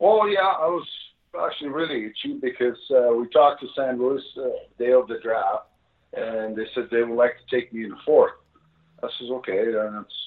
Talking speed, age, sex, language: 210 wpm, 50-69, male, English